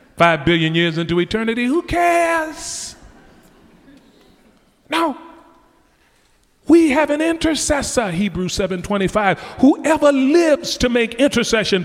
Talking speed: 95 wpm